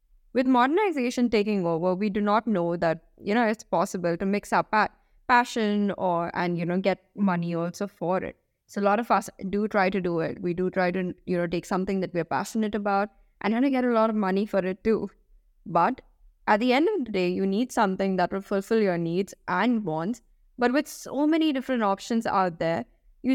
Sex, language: female, English